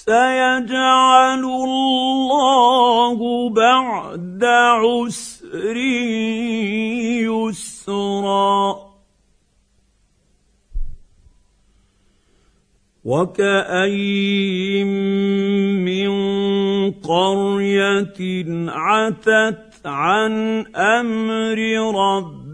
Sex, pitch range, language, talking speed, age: male, 195-235 Hz, Arabic, 30 wpm, 50-69